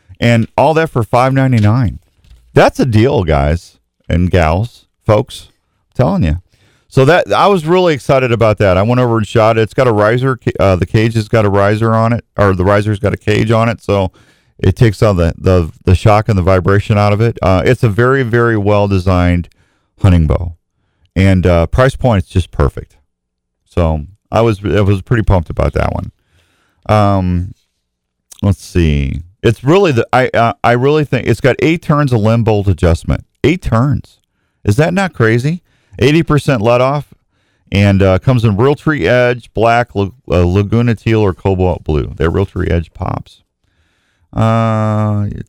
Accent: American